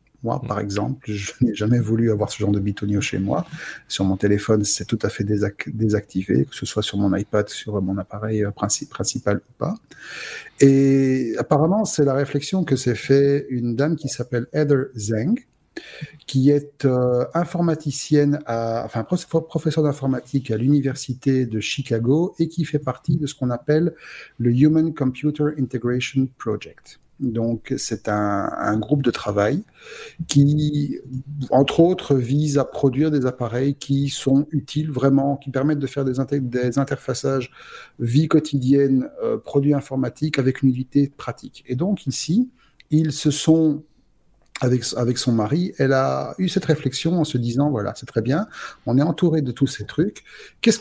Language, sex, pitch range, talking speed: French, male, 120-150 Hz, 165 wpm